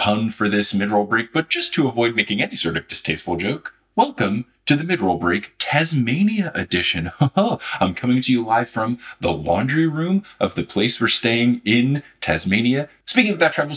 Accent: American